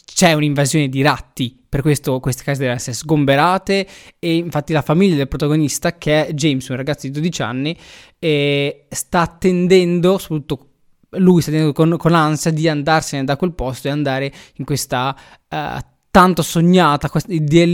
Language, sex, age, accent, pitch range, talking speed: Italian, male, 20-39, native, 140-165 Hz, 160 wpm